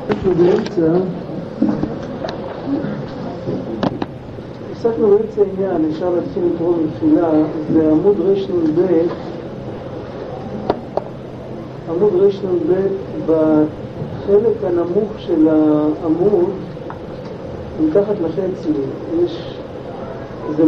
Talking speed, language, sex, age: 65 wpm, Hebrew, male, 50-69